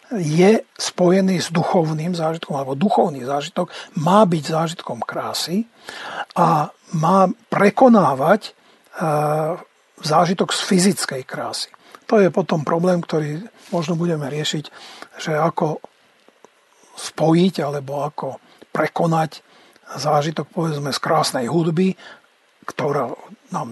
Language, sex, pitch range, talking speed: Slovak, male, 150-195 Hz, 100 wpm